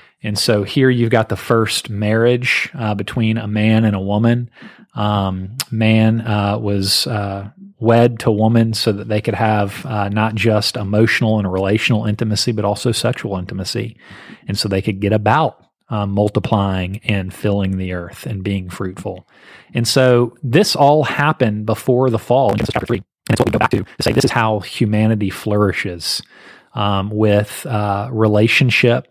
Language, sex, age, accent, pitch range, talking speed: English, male, 30-49, American, 100-115 Hz, 165 wpm